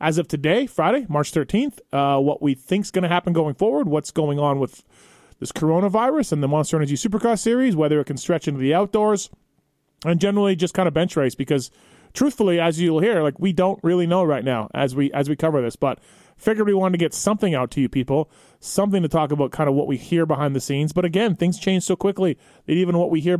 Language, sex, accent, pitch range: English, male, American, 145-185 Hz